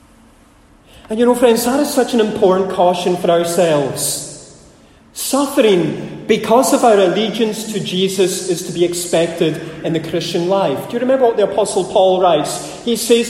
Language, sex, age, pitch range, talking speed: English, male, 30-49, 170-215 Hz, 165 wpm